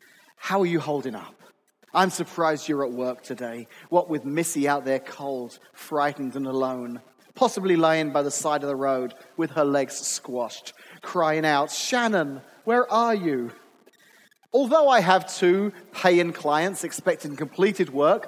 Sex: male